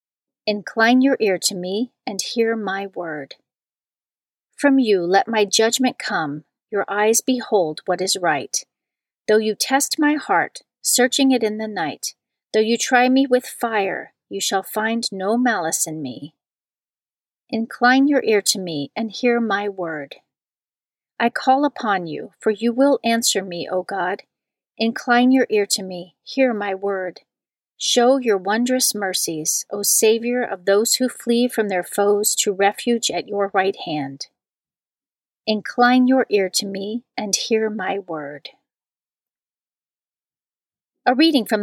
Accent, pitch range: American, 195-245 Hz